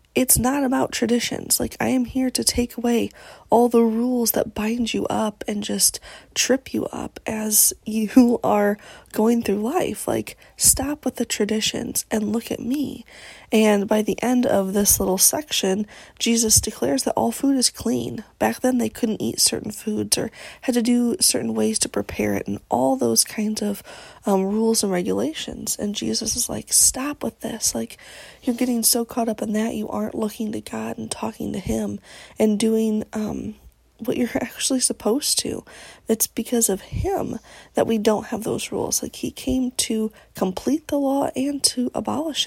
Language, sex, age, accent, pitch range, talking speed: English, female, 20-39, American, 210-245 Hz, 185 wpm